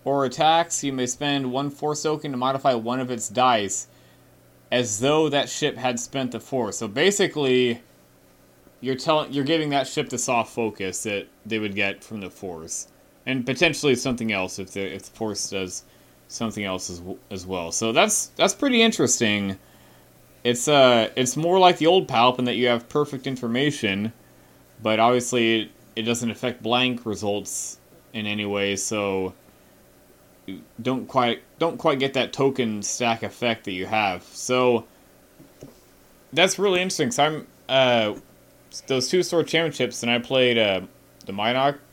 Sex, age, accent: male, 30-49, American